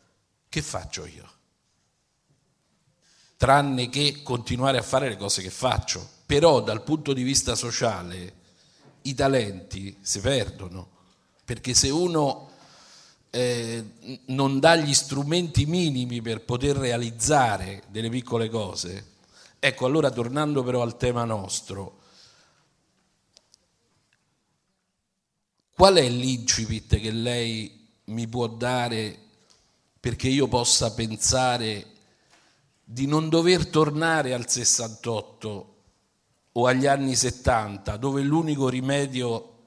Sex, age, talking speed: male, 50-69, 105 wpm